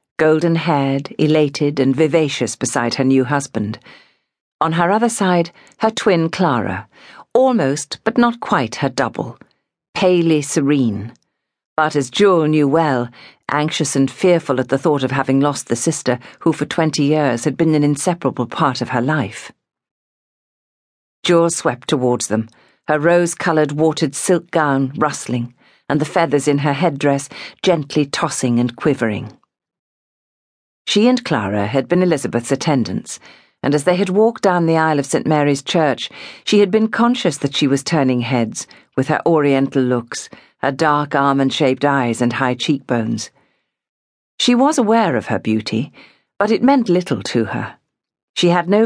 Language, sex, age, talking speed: English, female, 50-69, 155 wpm